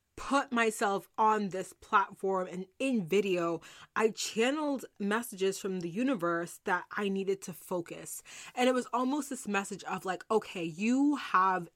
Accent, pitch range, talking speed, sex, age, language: American, 180-225 Hz, 155 wpm, female, 20-39, English